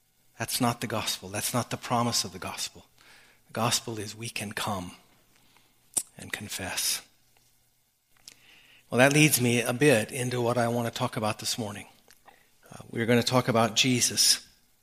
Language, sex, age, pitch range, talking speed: English, male, 50-69, 120-145 Hz, 165 wpm